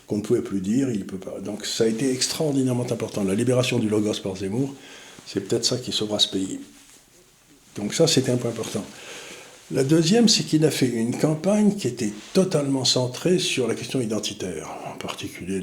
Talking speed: 200 wpm